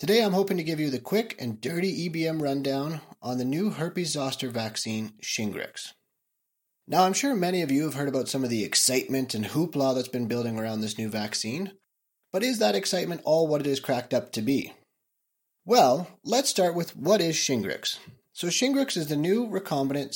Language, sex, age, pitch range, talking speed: English, male, 30-49, 125-185 Hz, 195 wpm